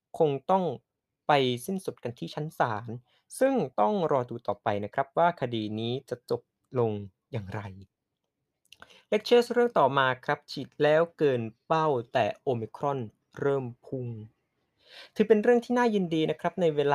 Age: 20-39